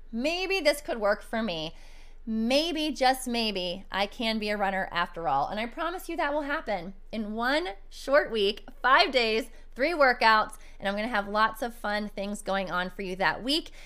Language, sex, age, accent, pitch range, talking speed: English, female, 20-39, American, 195-275 Hz, 195 wpm